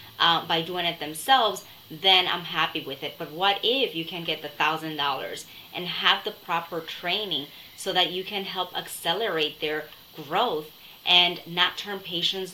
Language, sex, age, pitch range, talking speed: English, female, 20-39, 160-195 Hz, 165 wpm